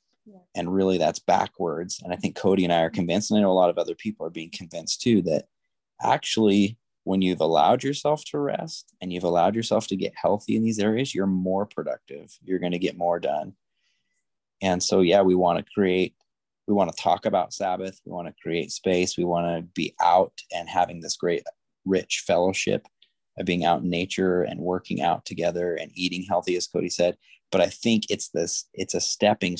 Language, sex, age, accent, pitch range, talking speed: English, male, 20-39, American, 90-100 Hz, 210 wpm